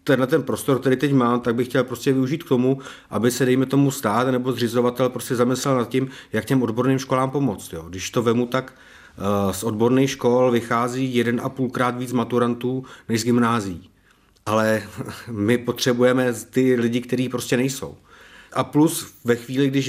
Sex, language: male, Czech